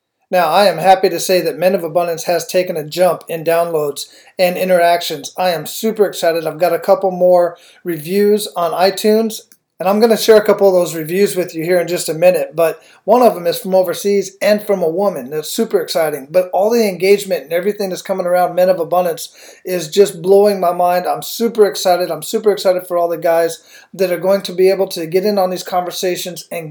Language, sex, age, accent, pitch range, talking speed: English, male, 40-59, American, 170-200 Hz, 225 wpm